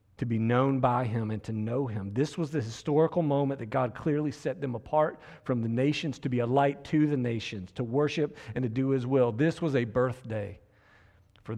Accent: American